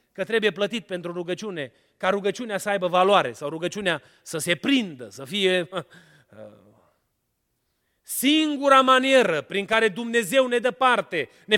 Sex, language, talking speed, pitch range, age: male, Romanian, 135 wpm, 145-205 Hz, 30-49